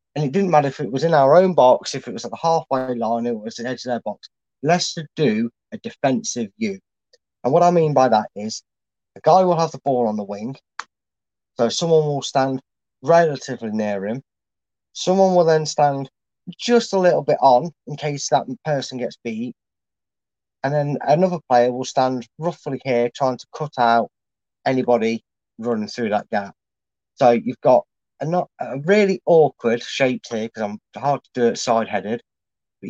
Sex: male